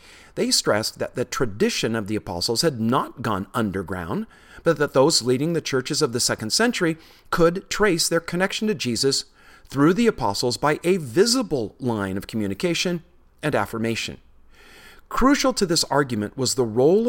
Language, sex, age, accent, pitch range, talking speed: English, male, 40-59, American, 115-170 Hz, 160 wpm